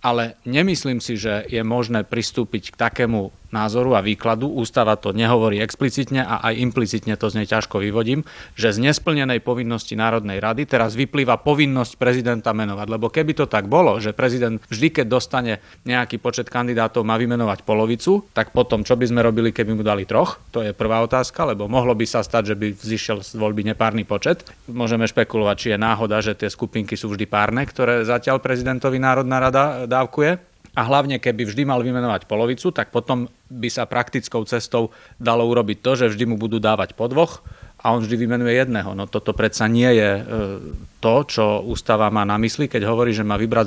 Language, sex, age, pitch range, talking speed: Slovak, male, 30-49, 110-125 Hz, 190 wpm